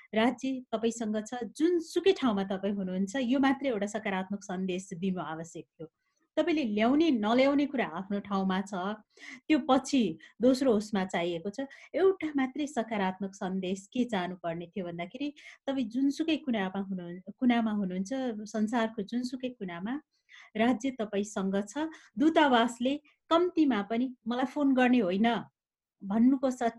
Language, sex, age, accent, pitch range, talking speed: Marathi, female, 30-49, native, 195-265 Hz, 80 wpm